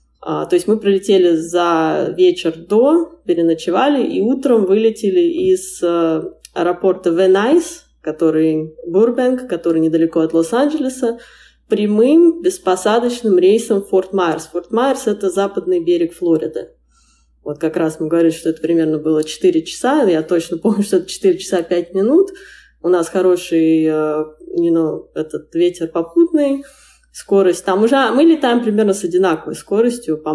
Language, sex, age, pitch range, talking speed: Russian, female, 20-39, 170-240 Hz, 130 wpm